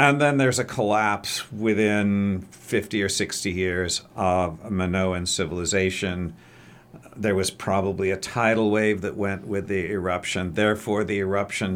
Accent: American